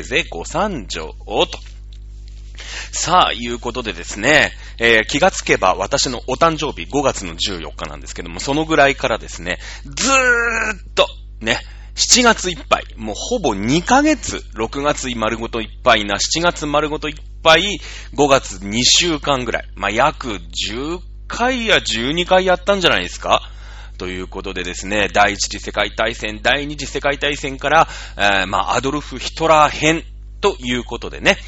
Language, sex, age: Japanese, male, 30-49